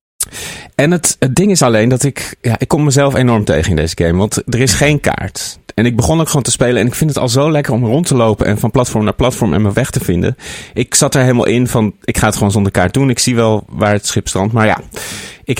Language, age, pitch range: Dutch, 30-49, 105-130 Hz